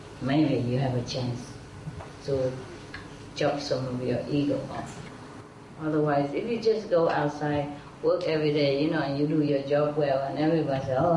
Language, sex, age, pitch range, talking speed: English, female, 30-49, 135-160 Hz, 175 wpm